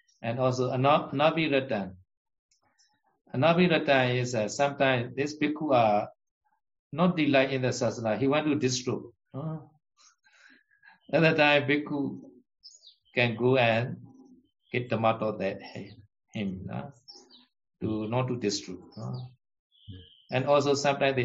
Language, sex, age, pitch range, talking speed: Vietnamese, male, 60-79, 110-145 Hz, 130 wpm